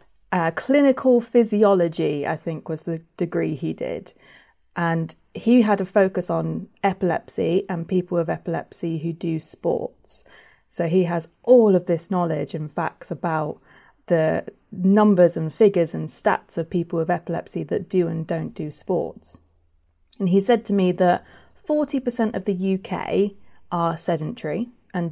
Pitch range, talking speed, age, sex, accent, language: 165-200 Hz, 150 wpm, 30-49, female, British, English